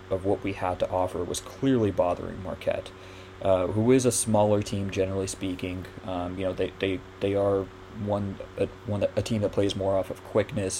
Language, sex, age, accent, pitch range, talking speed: English, male, 20-39, American, 95-105 Hz, 205 wpm